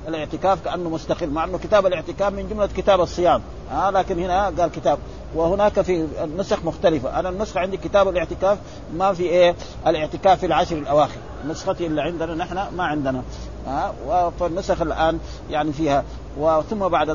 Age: 50-69